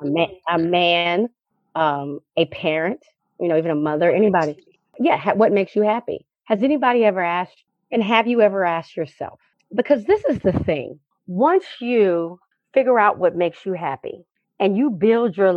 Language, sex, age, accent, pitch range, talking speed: English, female, 40-59, American, 175-225 Hz, 165 wpm